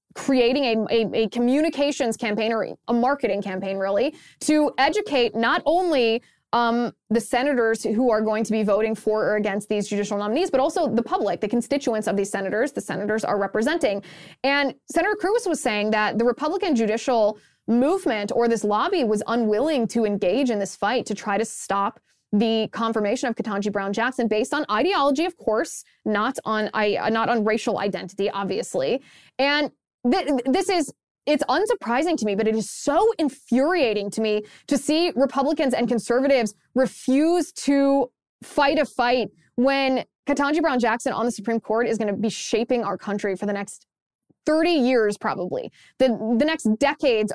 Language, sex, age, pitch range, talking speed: English, female, 20-39, 210-275 Hz, 170 wpm